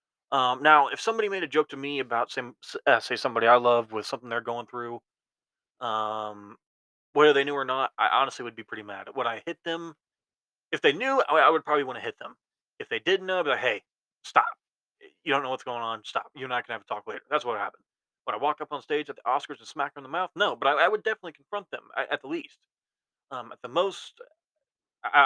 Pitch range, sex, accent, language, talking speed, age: 135-205 Hz, male, American, English, 245 wpm, 20-39